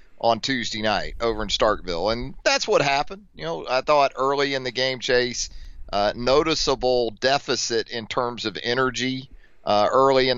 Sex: male